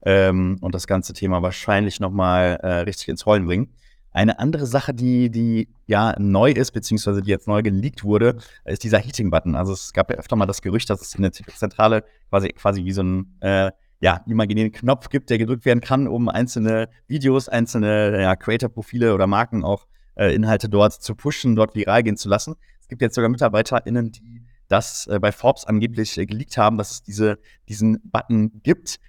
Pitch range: 100-120 Hz